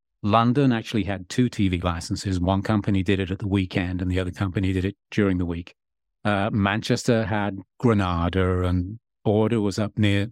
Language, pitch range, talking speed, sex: English, 95-115 Hz, 180 wpm, male